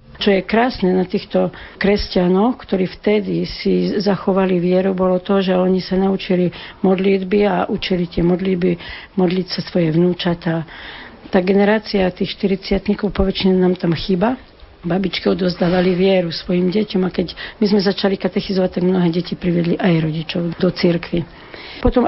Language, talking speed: Slovak, 145 wpm